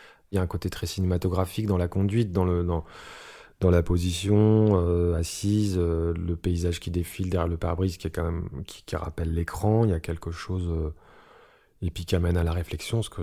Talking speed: 215 wpm